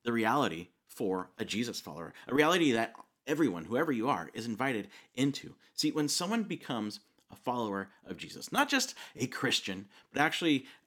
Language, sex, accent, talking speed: English, male, American, 165 wpm